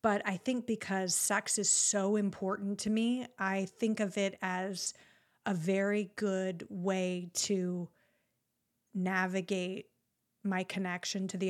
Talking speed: 130 wpm